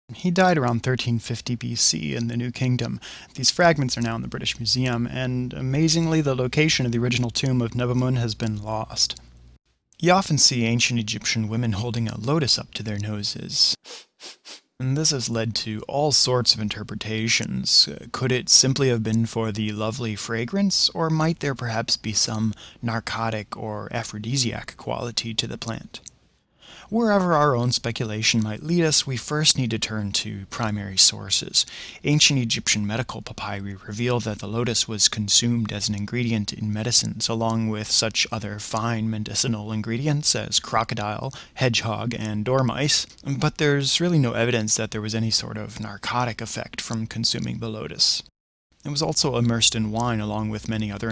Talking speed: 170 wpm